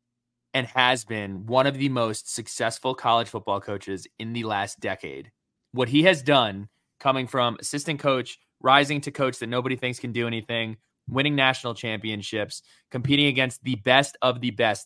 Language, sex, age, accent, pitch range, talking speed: English, male, 20-39, American, 115-140 Hz, 170 wpm